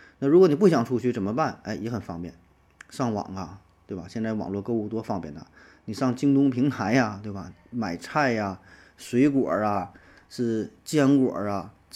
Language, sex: Chinese, male